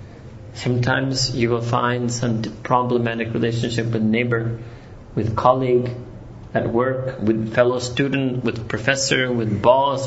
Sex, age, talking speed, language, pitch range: male, 30-49, 120 wpm, English, 110-135 Hz